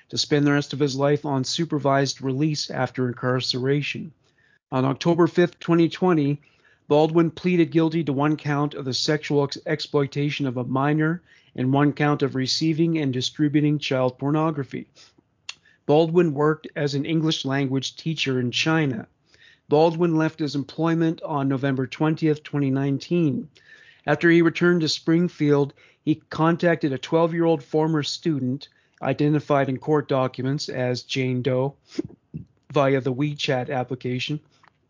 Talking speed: 130 wpm